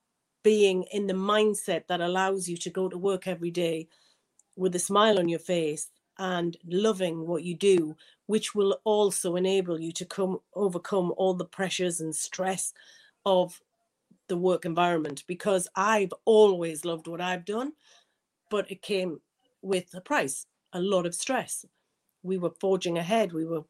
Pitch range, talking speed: 170-195 Hz, 160 wpm